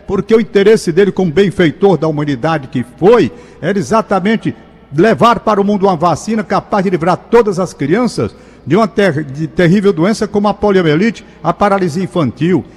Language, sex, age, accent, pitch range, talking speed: Portuguese, male, 60-79, Brazilian, 165-215 Hz, 160 wpm